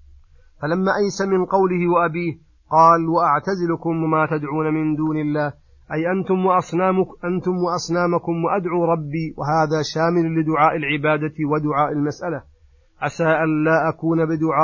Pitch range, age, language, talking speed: 155-170 Hz, 30-49, Arabic, 125 wpm